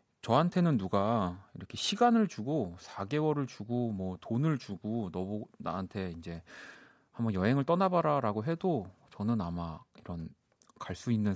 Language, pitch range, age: Korean, 100-145 Hz, 30-49